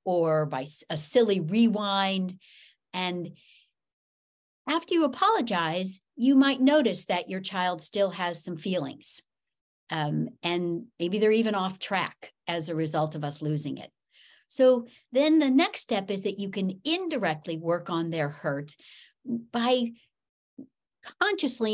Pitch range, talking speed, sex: 170-270 Hz, 135 wpm, female